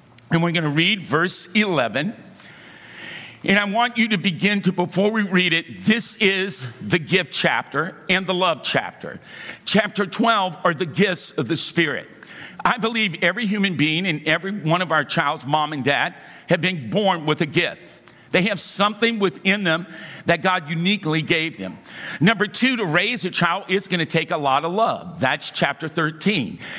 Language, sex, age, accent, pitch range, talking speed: English, male, 50-69, American, 160-195 Hz, 185 wpm